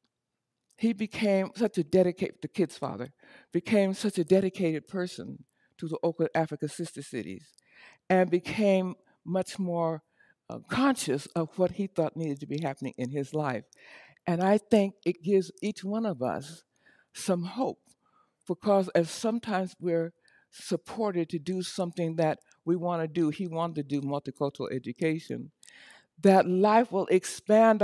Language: English